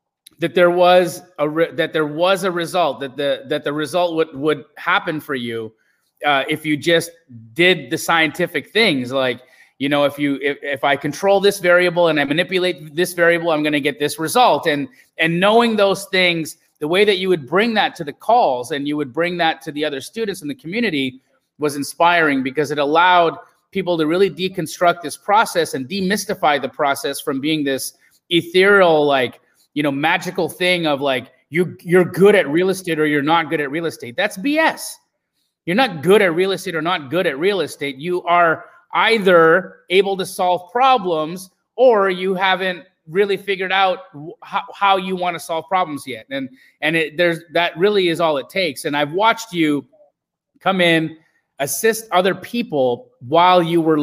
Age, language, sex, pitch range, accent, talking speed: 30-49, English, male, 150-185 Hz, American, 195 wpm